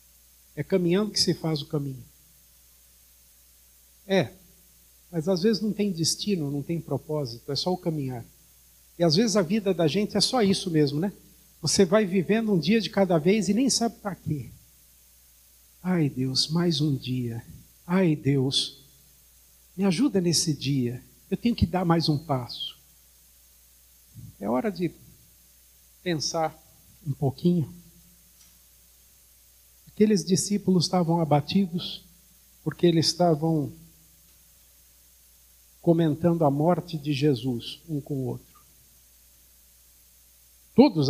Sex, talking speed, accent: male, 125 wpm, Brazilian